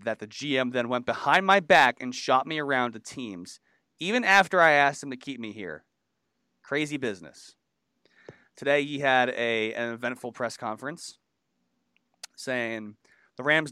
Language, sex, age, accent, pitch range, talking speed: English, male, 30-49, American, 115-145 Hz, 155 wpm